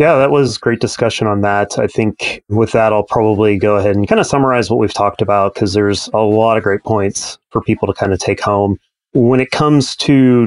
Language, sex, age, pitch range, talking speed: English, male, 30-49, 100-120 Hz, 235 wpm